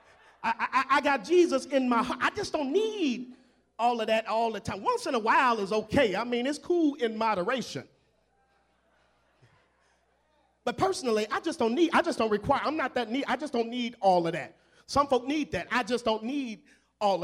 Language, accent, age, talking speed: English, American, 40-59, 210 wpm